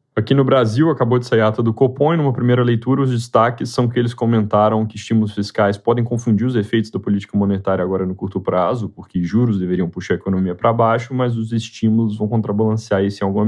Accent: Brazilian